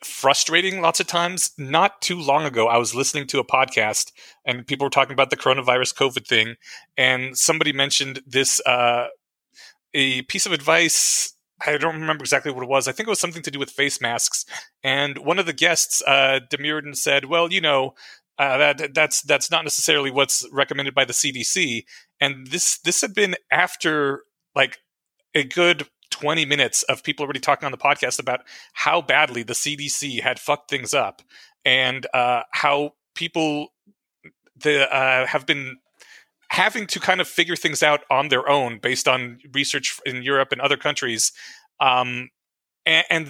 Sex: male